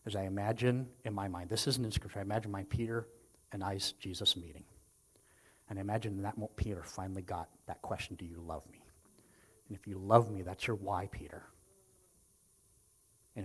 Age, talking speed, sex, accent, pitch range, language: 40-59, 185 wpm, male, American, 95-115 Hz, English